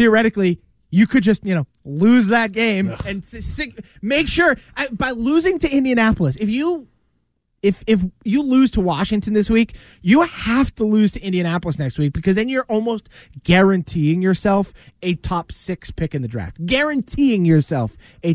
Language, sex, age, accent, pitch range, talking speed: English, male, 20-39, American, 165-215 Hz, 170 wpm